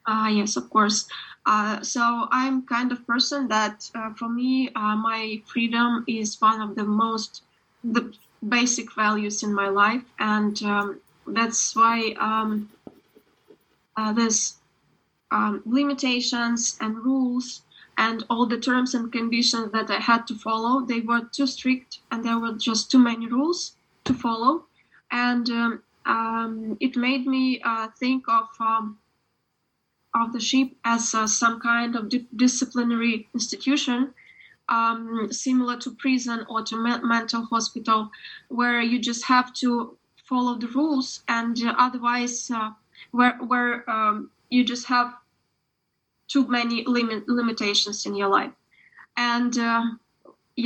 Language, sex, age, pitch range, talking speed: English, female, 20-39, 225-250 Hz, 140 wpm